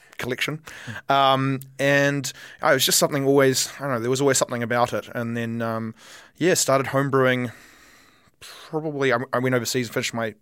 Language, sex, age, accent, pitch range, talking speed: English, male, 20-39, Australian, 110-125 Hz, 190 wpm